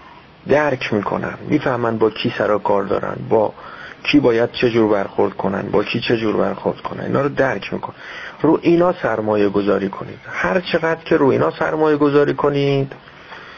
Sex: male